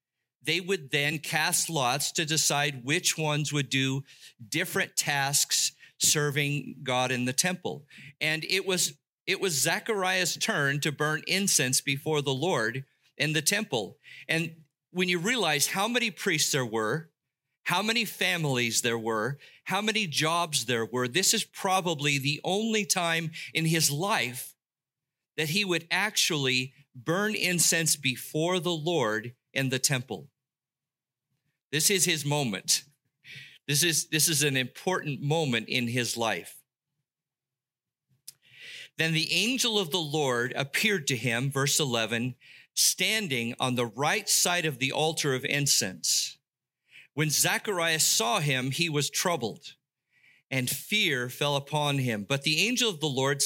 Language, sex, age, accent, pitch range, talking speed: English, male, 50-69, American, 135-175 Hz, 140 wpm